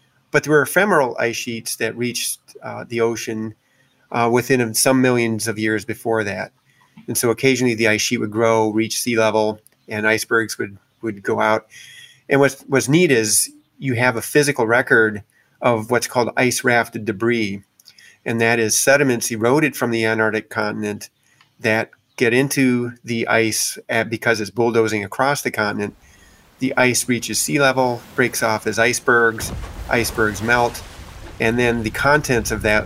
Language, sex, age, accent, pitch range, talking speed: English, male, 30-49, American, 110-125 Hz, 160 wpm